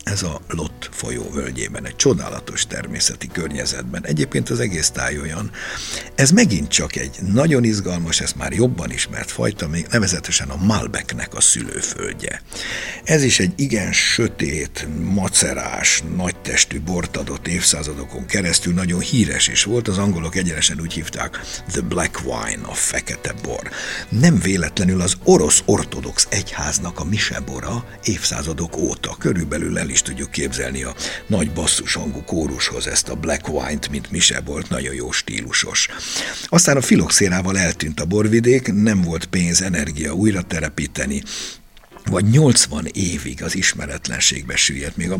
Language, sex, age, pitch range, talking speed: Hungarian, male, 60-79, 80-105 Hz, 140 wpm